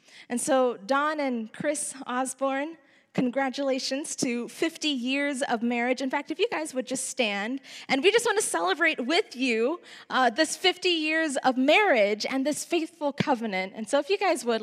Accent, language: American, English